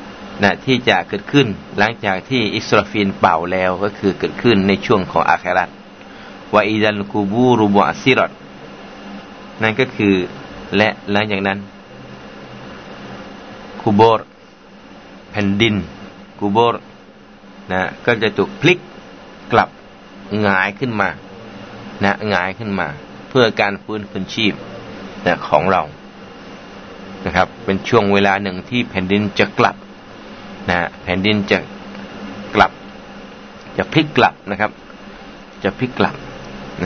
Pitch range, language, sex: 95-105 Hz, Thai, male